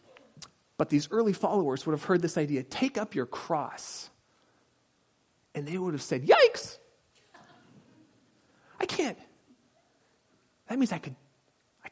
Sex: male